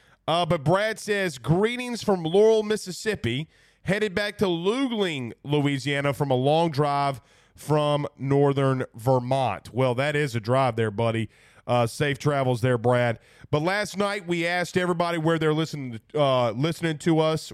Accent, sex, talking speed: American, male, 155 wpm